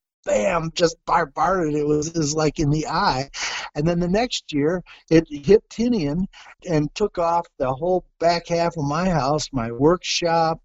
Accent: American